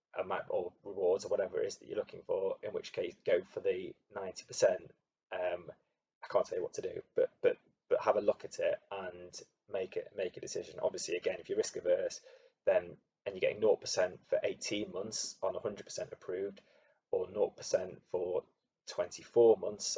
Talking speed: 190 wpm